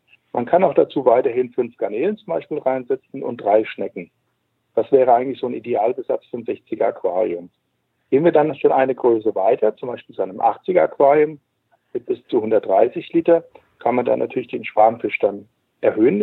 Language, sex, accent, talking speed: German, male, German, 175 wpm